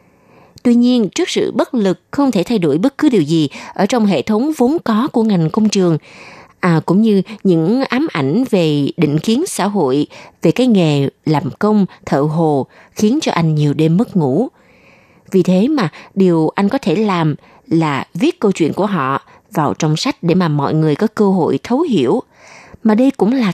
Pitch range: 165-235 Hz